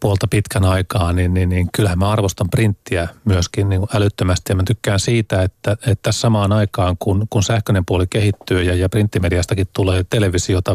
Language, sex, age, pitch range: Finnish, male, 30-49, 95-115 Hz